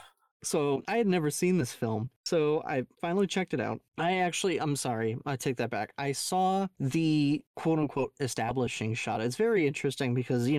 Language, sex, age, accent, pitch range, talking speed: English, male, 30-49, American, 120-150 Hz, 180 wpm